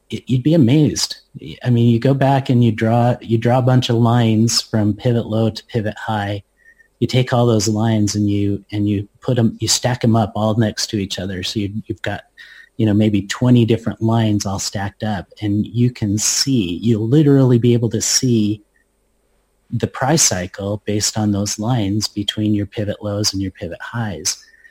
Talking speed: 200 wpm